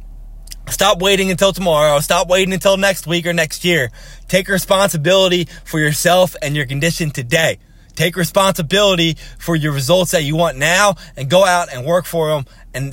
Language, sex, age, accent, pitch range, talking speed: English, male, 20-39, American, 145-185 Hz, 170 wpm